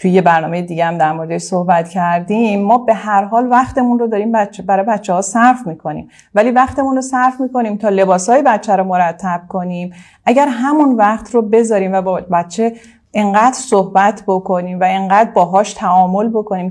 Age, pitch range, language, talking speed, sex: 30-49, 180-240 Hz, Persian, 180 wpm, female